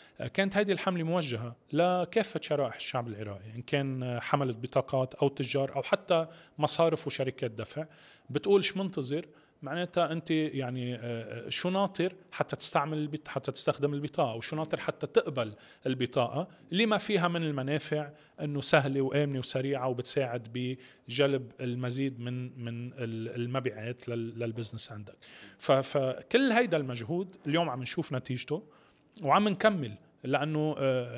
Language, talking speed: Arabic, 120 wpm